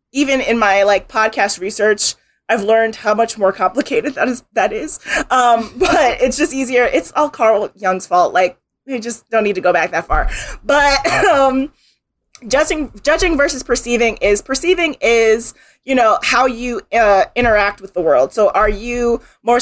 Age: 30-49